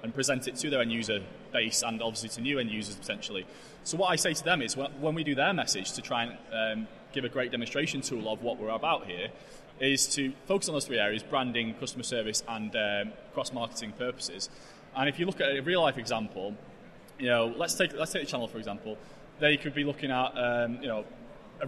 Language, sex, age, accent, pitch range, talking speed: English, male, 20-39, British, 120-150 Hz, 225 wpm